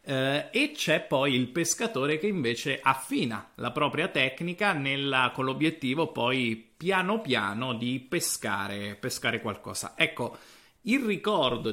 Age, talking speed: 30-49, 130 wpm